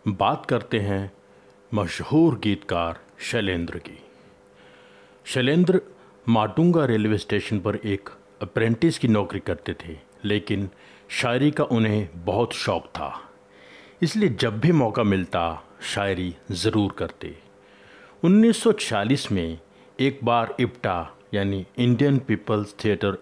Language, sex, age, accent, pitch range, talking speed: Hindi, male, 50-69, native, 100-125 Hz, 110 wpm